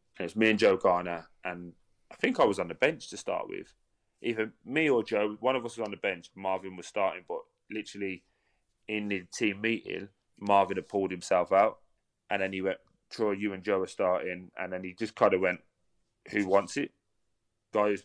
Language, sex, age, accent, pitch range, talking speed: English, male, 20-39, British, 90-105 Hz, 210 wpm